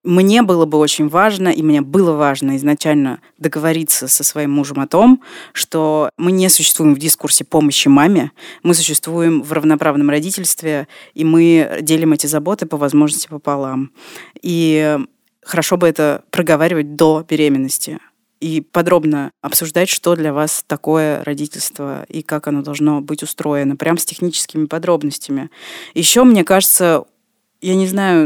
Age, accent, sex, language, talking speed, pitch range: 20-39, native, female, Russian, 145 wpm, 150-180 Hz